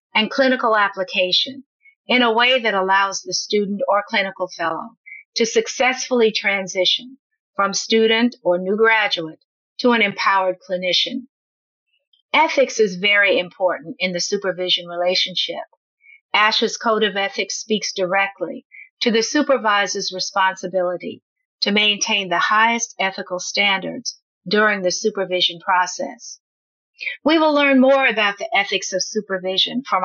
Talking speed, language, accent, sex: 125 wpm, English, American, female